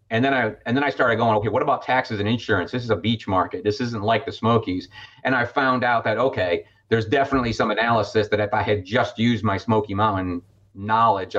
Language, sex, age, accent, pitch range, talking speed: English, male, 40-59, American, 105-130 Hz, 230 wpm